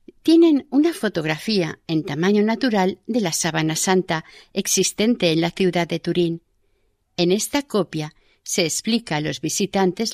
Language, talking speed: Spanish, 140 wpm